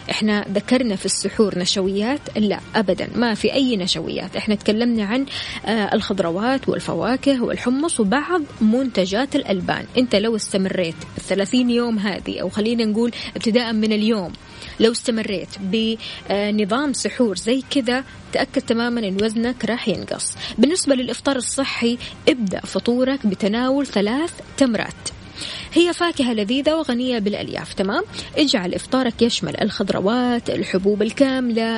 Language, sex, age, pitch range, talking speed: Arabic, female, 20-39, 210-260 Hz, 120 wpm